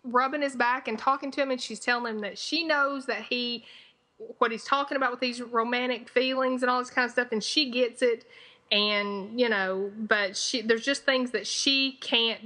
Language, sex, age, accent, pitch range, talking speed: English, female, 30-49, American, 205-250 Hz, 215 wpm